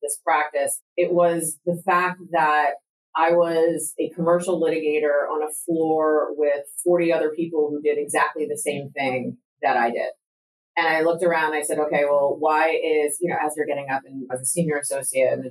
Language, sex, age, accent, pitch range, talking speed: English, female, 30-49, American, 145-175 Hz, 195 wpm